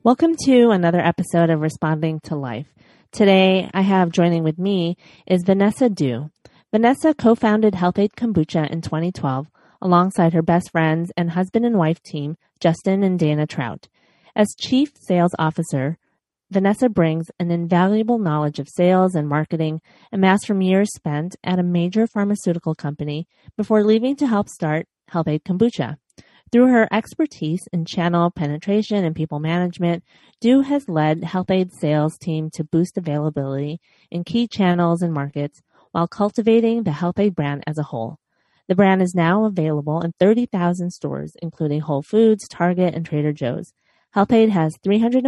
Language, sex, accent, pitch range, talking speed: English, female, American, 155-205 Hz, 150 wpm